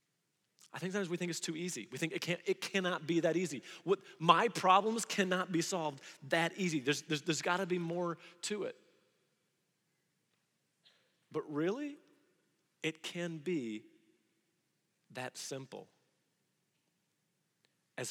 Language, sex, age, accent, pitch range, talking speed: English, male, 30-49, American, 150-185 Hz, 135 wpm